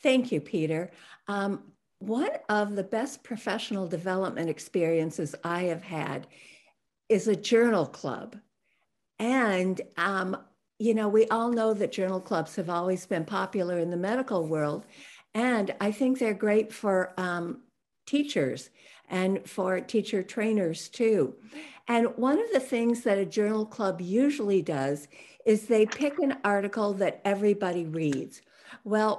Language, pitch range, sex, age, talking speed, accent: English, 185-235 Hz, female, 60-79, 140 wpm, American